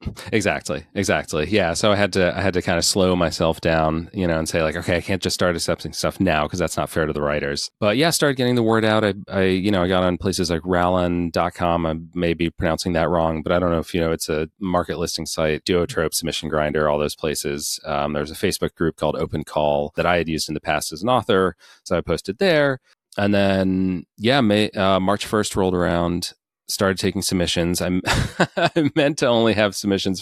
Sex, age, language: male, 30-49, English